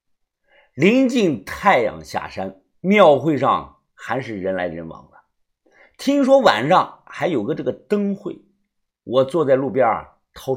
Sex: male